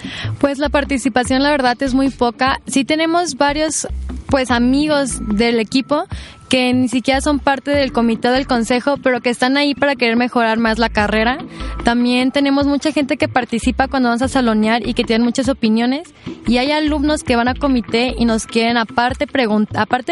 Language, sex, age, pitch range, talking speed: Spanish, female, 10-29, 230-270 Hz, 185 wpm